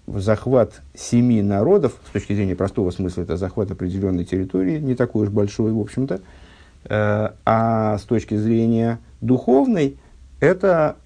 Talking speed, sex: 130 wpm, male